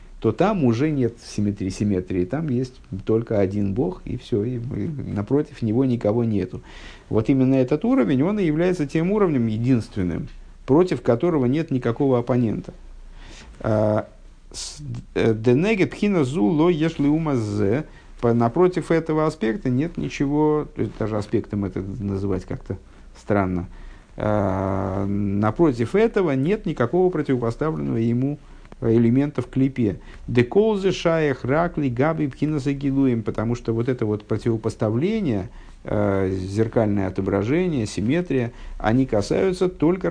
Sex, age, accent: male, 50-69, native